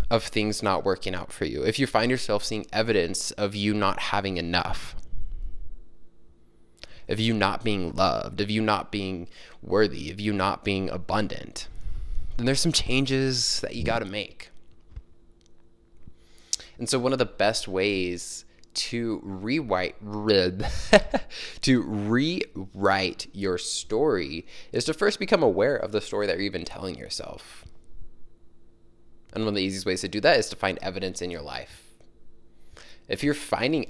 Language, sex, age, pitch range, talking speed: English, male, 20-39, 85-115 Hz, 155 wpm